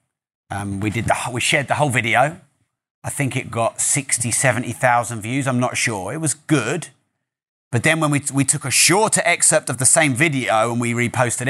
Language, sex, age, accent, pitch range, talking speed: English, male, 30-49, British, 120-145 Hz, 205 wpm